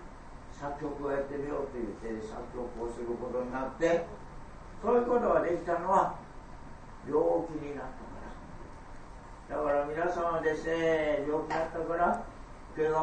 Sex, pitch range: male, 145-190 Hz